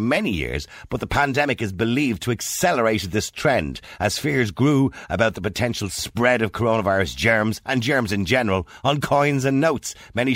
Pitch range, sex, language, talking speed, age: 95-130 Hz, male, English, 175 wpm, 50-69